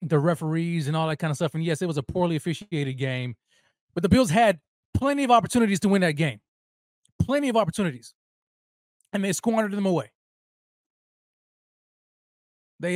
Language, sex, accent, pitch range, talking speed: English, male, American, 140-195 Hz, 165 wpm